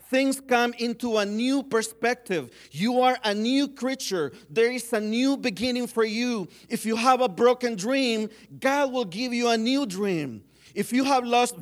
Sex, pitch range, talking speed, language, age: male, 155-225 Hz, 180 wpm, English, 40-59